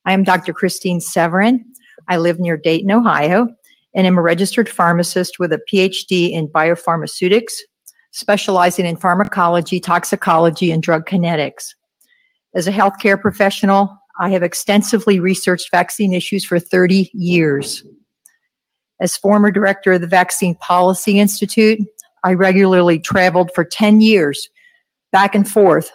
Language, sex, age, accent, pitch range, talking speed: English, female, 50-69, American, 170-200 Hz, 130 wpm